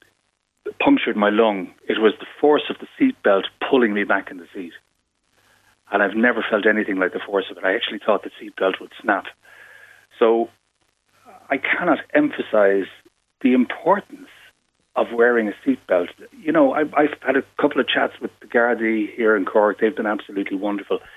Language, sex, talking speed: English, male, 175 wpm